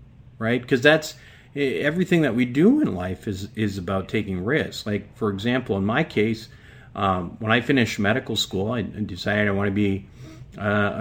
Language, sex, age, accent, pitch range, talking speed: English, male, 40-59, American, 100-130 Hz, 180 wpm